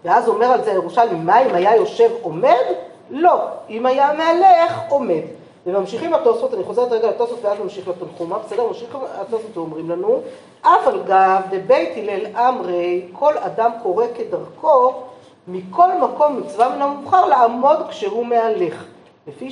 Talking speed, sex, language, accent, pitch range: 150 wpm, female, Hebrew, native, 190-315 Hz